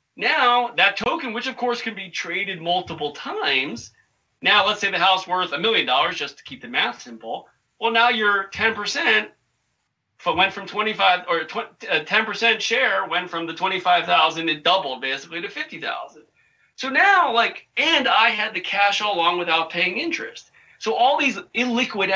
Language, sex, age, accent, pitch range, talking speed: English, male, 40-59, American, 160-230 Hz, 175 wpm